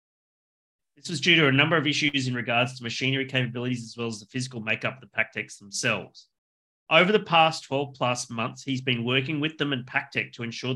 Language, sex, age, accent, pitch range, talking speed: English, male, 30-49, Australian, 115-140 Hz, 210 wpm